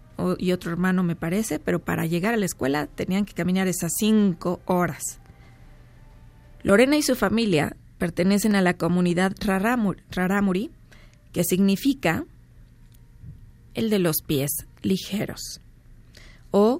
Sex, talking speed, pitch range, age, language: female, 125 wpm, 170-215 Hz, 20-39, Spanish